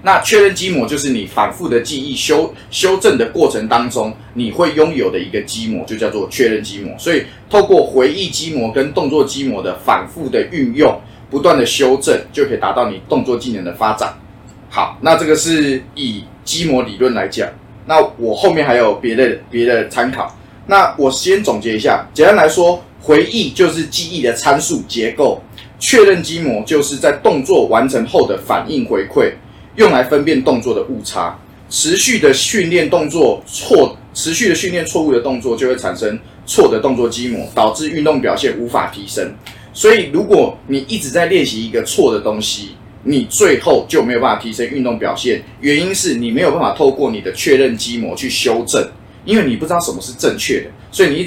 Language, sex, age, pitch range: Chinese, male, 20-39, 115-170 Hz